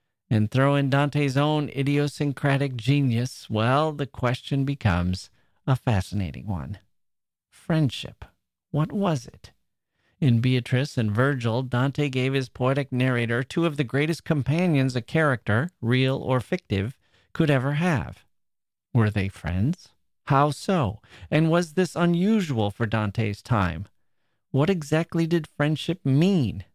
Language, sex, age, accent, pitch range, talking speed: English, male, 40-59, American, 110-150 Hz, 130 wpm